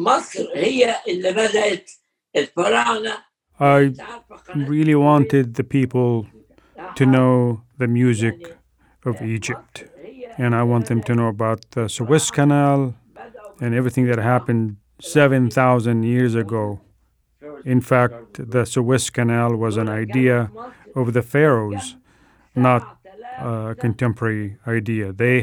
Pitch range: 115-140 Hz